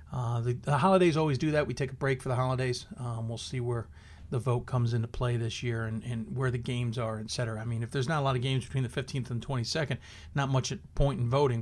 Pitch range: 120-150 Hz